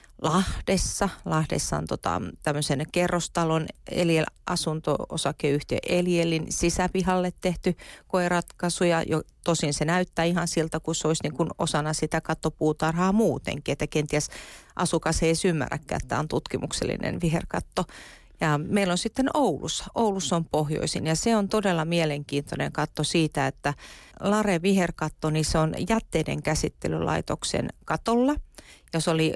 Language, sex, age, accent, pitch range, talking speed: Finnish, female, 40-59, native, 150-180 Hz, 125 wpm